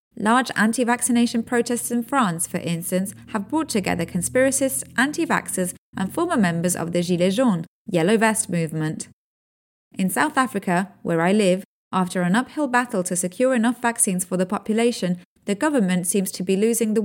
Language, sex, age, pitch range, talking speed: English, female, 30-49, 175-245 Hz, 160 wpm